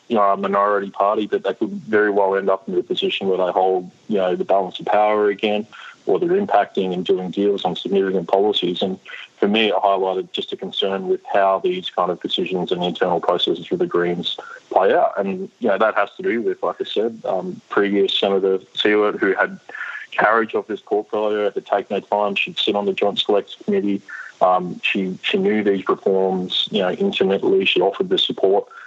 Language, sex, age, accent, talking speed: English, male, 20-39, Australian, 210 wpm